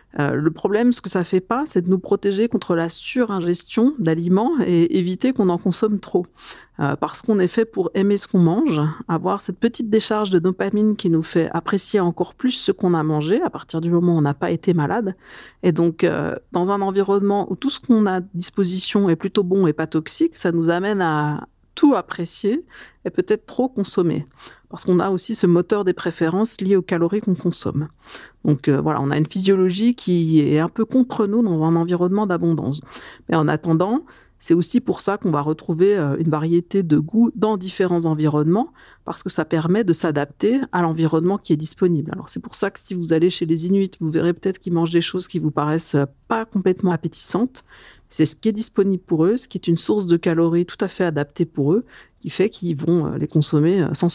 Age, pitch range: 50-69, 165-200 Hz